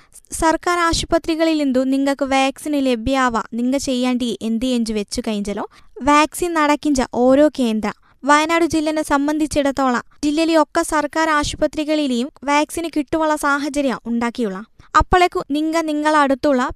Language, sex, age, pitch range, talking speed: Malayalam, female, 20-39, 260-315 Hz, 105 wpm